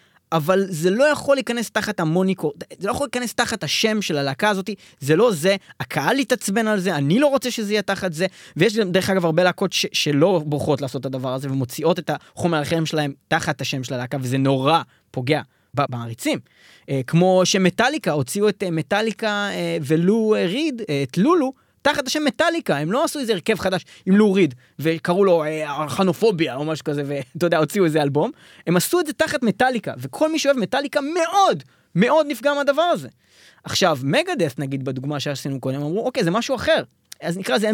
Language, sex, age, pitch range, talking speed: Hebrew, male, 20-39, 150-230 Hz, 185 wpm